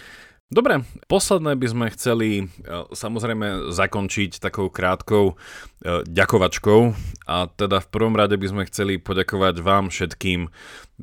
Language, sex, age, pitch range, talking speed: Slovak, male, 30-49, 90-105 Hz, 115 wpm